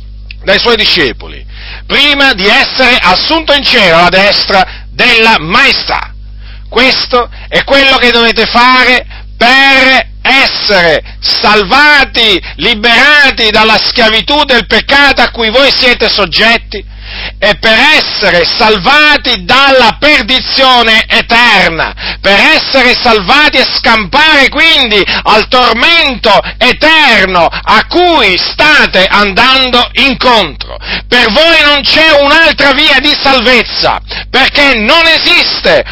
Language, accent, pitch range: Italian, native, 220-280 Hz